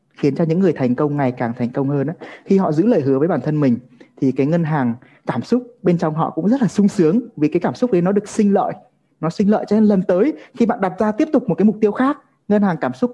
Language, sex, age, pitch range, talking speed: Vietnamese, male, 20-39, 135-195 Hz, 295 wpm